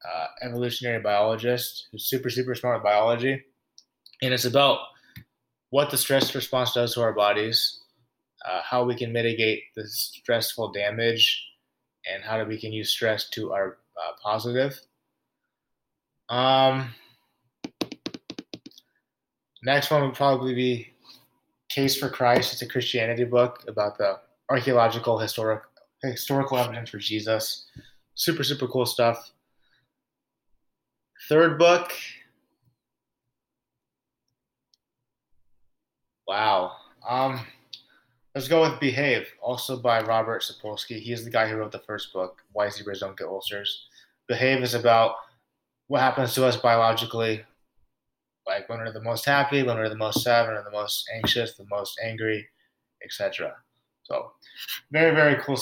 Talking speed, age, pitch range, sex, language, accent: 130 wpm, 20-39, 110-130 Hz, male, English, American